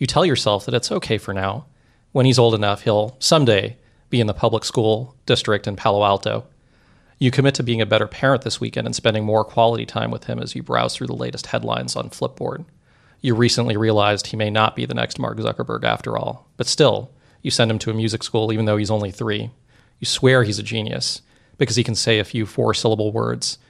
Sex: male